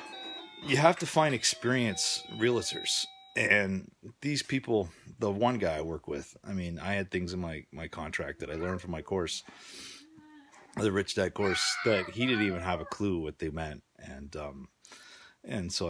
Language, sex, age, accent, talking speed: English, male, 30-49, American, 180 wpm